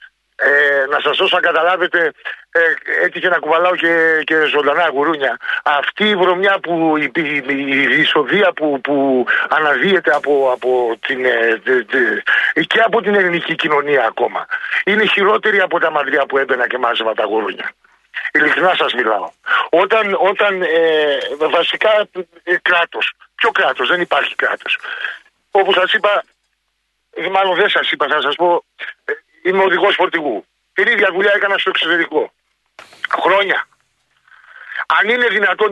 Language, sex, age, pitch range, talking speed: Greek, male, 50-69, 150-205 Hz, 145 wpm